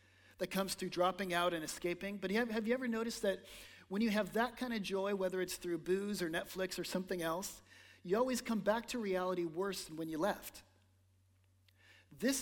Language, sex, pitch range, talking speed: English, male, 130-210 Hz, 200 wpm